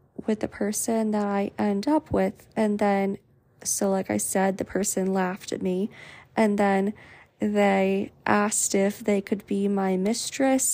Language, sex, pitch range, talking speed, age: English, female, 205-235 Hz, 160 wpm, 20-39